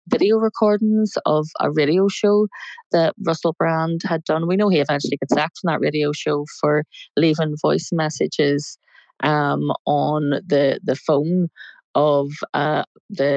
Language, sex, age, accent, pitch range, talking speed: English, female, 30-49, Irish, 145-170 Hz, 150 wpm